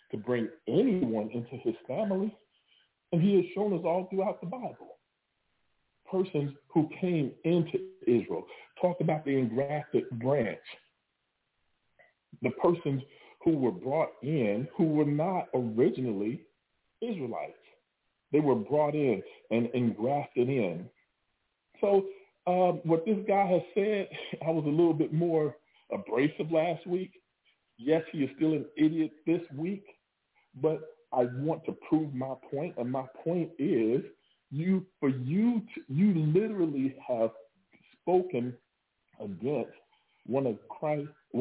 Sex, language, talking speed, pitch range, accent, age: male, English, 130 wpm, 135-185 Hz, American, 40-59